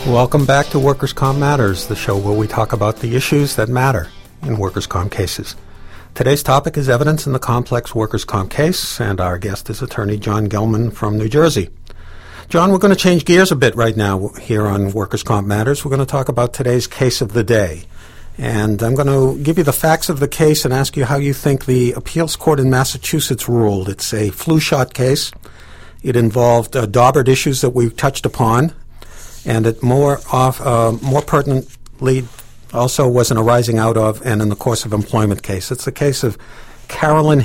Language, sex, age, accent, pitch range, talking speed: English, male, 50-69, American, 110-135 Hz, 200 wpm